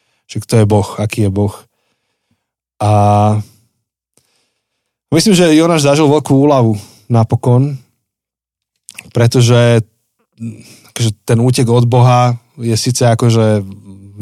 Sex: male